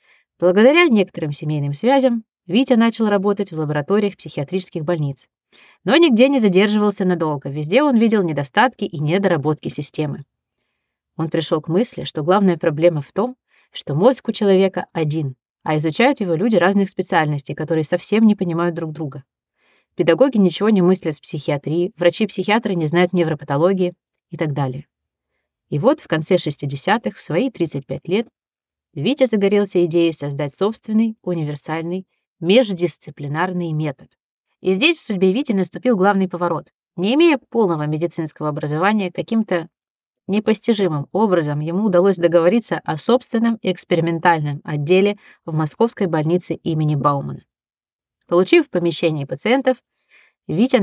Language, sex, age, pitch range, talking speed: Russian, female, 30-49, 160-210 Hz, 130 wpm